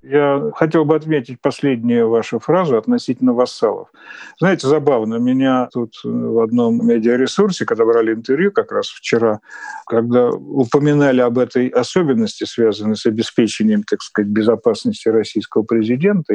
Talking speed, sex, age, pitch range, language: 130 wpm, male, 50-69, 120-175 Hz, Russian